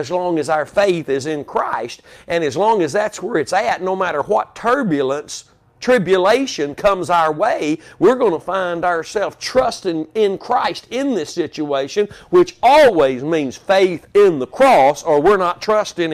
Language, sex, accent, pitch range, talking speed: English, male, American, 155-220 Hz, 170 wpm